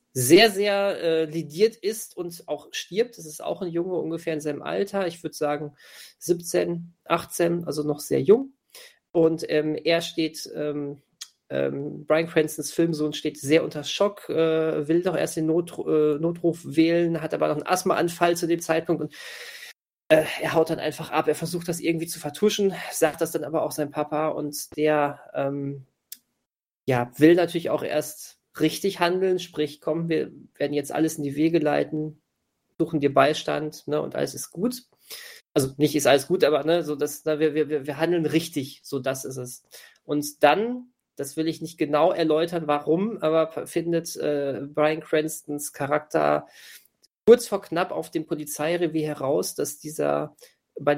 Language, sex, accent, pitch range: German, male, German, 150-170 Hz